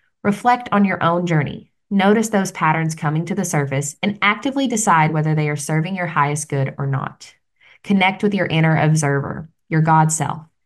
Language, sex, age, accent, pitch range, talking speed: English, female, 20-39, American, 155-200 Hz, 180 wpm